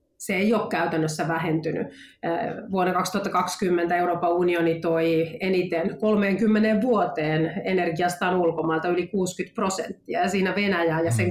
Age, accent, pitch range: 30-49, native, 170-205 Hz